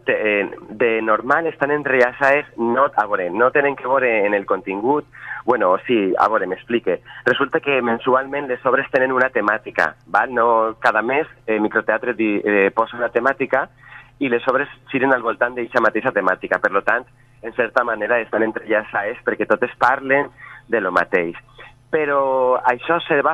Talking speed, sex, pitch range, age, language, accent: 165 wpm, male, 115-135 Hz, 30-49, Spanish, Spanish